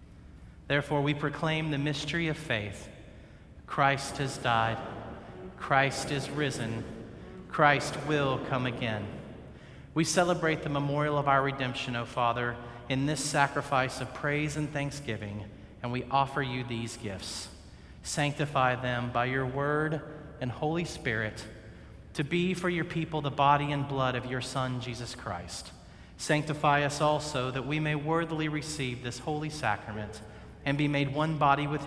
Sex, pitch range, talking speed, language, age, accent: male, 115-145 Hz, 145 wpm, English, 40-59, American